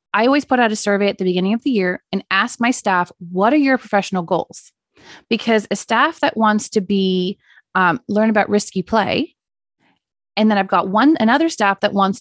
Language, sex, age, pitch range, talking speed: English, female, 30-49, 195-245 Hz, 205 wpm